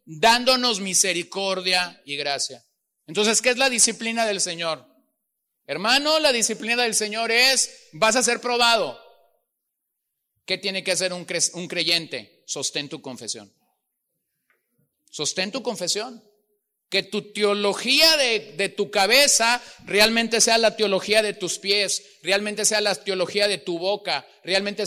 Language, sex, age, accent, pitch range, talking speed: Spanish, male, 40-59, Mexican, 170-240 Hz, 135 wpm